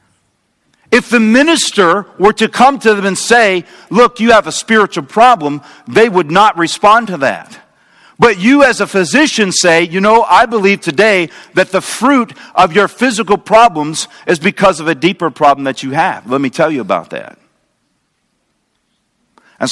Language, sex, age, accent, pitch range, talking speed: English, male, 50-69, American, 150-205 Hz, 170 wpm